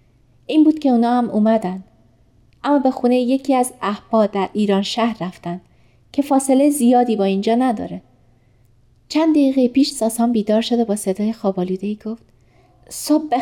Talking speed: 150 wpm